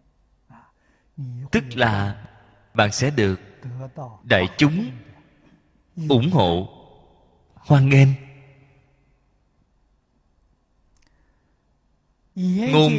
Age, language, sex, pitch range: 20-39, Vietnamese, male, 95-150 Hz